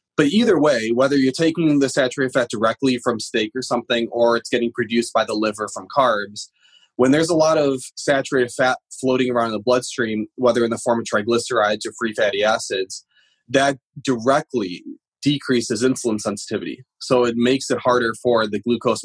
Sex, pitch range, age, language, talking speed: male, 115-140 Hz, 20-39, English, 185 wpm